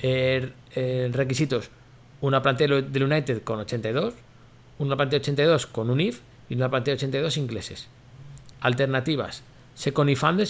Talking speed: 135 wpm